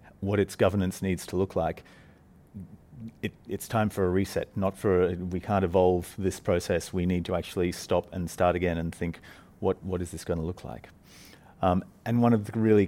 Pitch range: 90-105 Hz